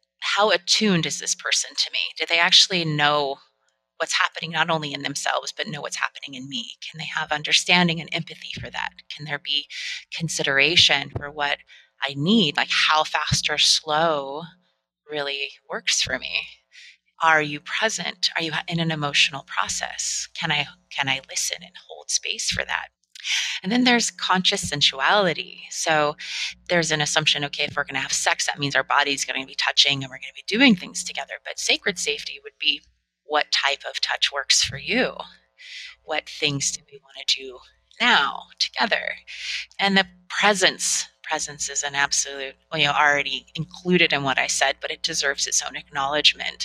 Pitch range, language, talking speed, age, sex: 140-170 Hz, English, 180 wpm, 30-49, female